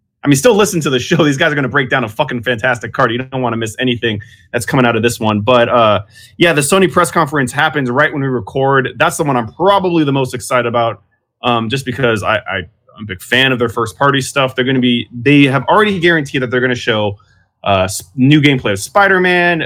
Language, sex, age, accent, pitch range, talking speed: English, male, 20-39, American, 110-135 Hz, 255 wpm